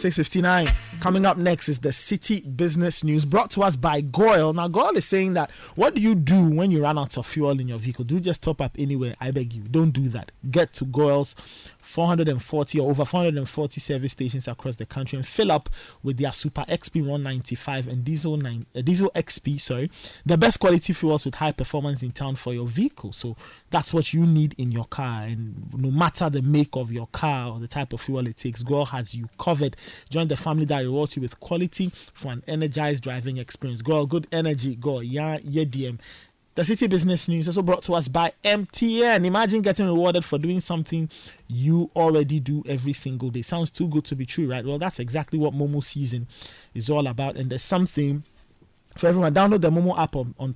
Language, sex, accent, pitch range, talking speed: English, male, Nigerian, 130-170 Hz, 210 wpm